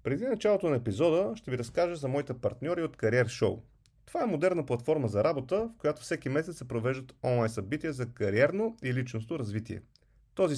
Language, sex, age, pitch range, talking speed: Bulgarian, male, 30-49, 115-160 Hz, 185 wpm